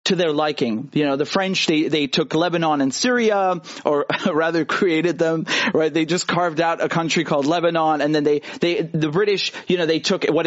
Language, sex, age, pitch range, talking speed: English, male, 30-49, 155-230 Hz, 210 wpm